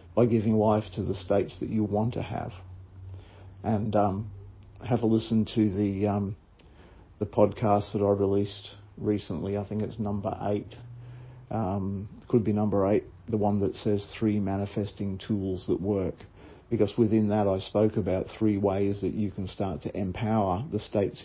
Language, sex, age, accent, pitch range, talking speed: English, male, 50-69, Australian, 90-105 Hz, 170 wpm